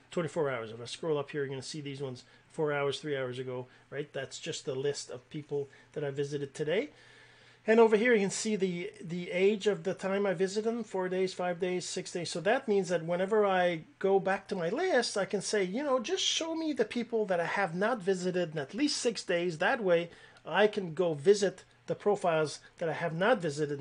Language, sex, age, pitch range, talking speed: English, male, 40-59, 155-210 Hz, 235 wpm